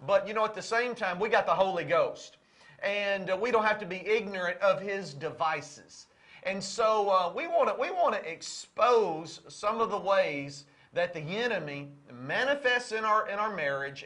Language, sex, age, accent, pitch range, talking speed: English, male, 40-59, American, 170-215 Hz, 185 wpm